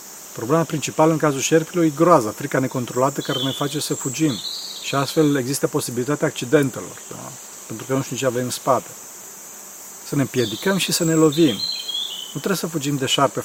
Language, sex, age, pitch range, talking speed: Romanian, male, 40-59, 130-170 Hz, 185 wpm